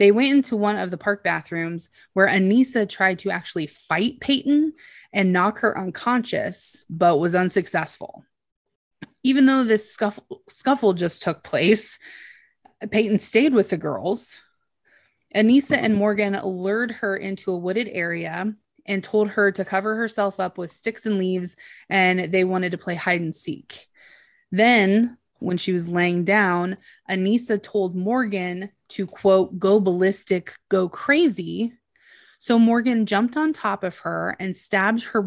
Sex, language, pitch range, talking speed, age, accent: female, English, 185-225 Hz, 150 wpm, 20-39, American